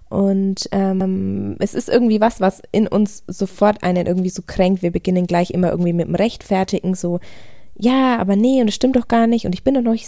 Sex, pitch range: female, 175-215 Hz